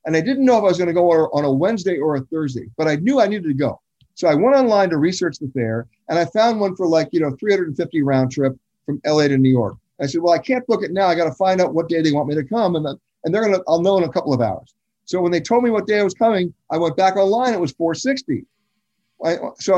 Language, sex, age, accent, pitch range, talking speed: English, male, 50-69, American, 150-210 Hz, 295 wpm